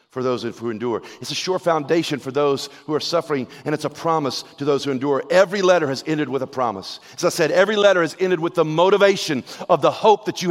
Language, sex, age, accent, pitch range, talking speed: English, male, 40-59, American, 130-200 Hz, 245 wpm